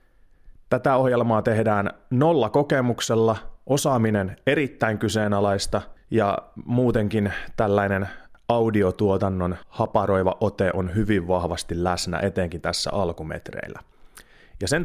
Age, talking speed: 30-49, 95 wpm